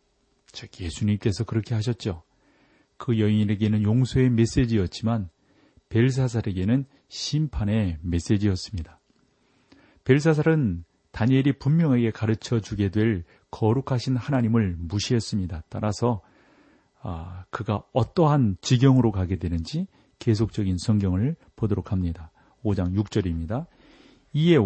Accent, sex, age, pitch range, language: native, male, 40-59, 100-125 Hz, Korean